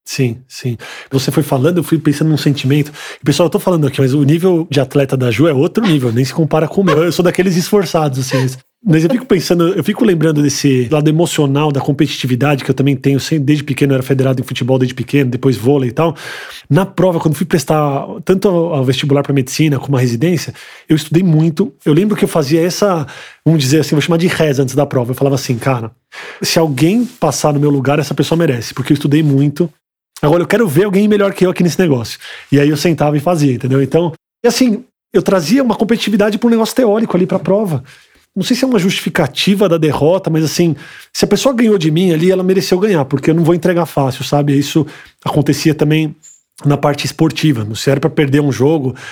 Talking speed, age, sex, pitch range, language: 225 wpm, 20-39, male, 140-180 Hz, Portuguese